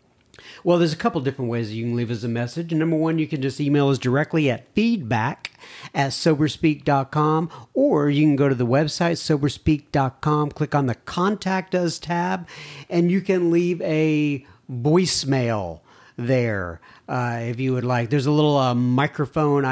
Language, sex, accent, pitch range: English, male, American, 130-165 Hz